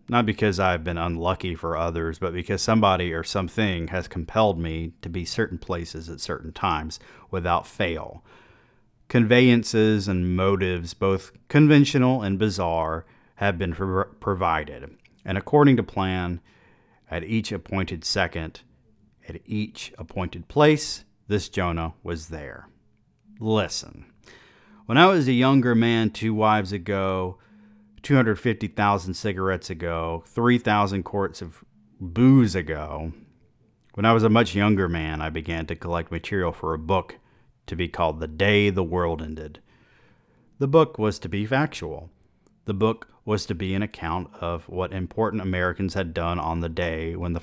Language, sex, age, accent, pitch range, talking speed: English, male, 40-59, American, 85-110 Hz, 145 wpm